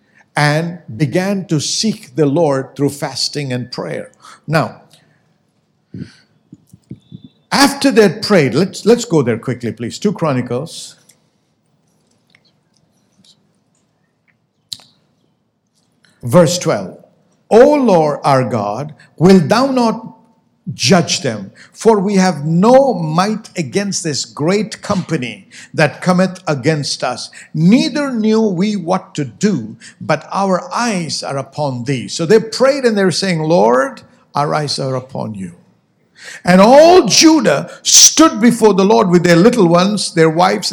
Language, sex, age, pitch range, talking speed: English, male, 60-79, 140-205 Hz, 120 wpm